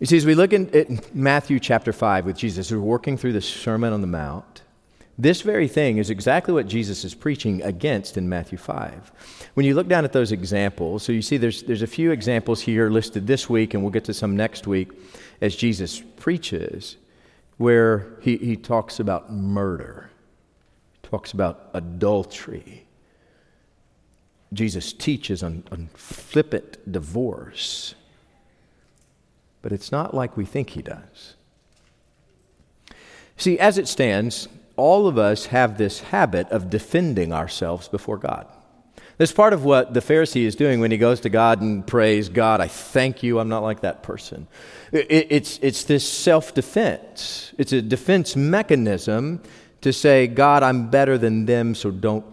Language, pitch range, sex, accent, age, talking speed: English, 105-140 Hz, male, American, 40-59, 160 wpm